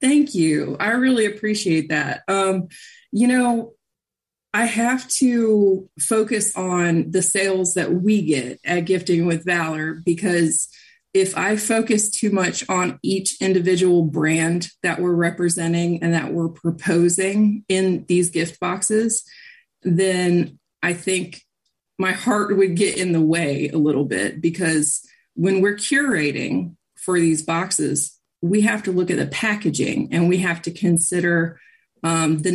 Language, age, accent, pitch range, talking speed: English, 20-39, American, 165-205 Hz, 145 wpm